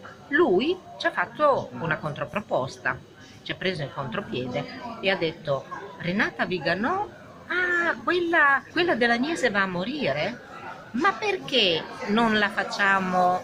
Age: 50-69